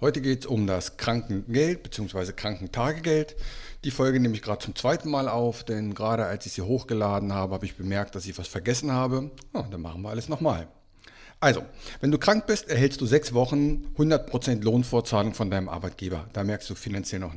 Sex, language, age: male, German, 50-69